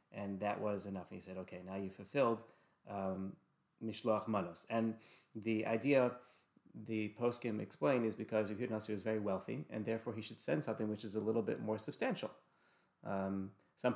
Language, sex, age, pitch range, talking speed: English, male, 30-49, 105-130 Hz, 175 wpm